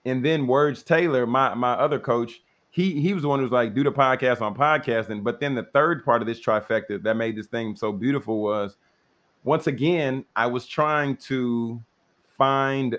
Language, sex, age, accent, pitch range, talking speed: English, male, 30-49, American, 125-155 Hz, 200 wpm